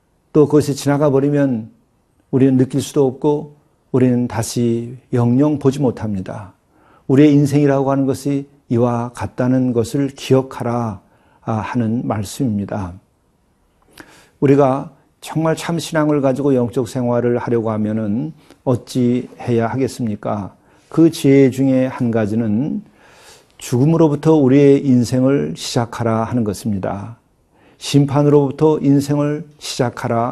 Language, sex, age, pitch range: Korean, male, 50-69, 115-140 Hz